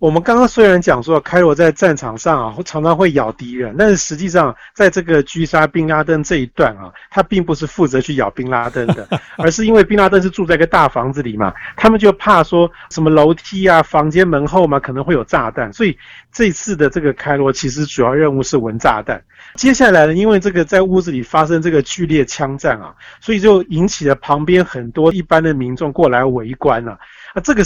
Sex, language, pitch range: male, Chinese, 145-185 Hz